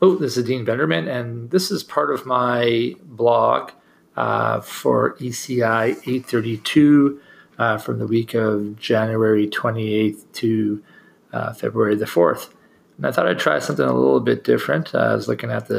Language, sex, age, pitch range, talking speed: English, male, 40-59, 110-125 Hz, 165 wpm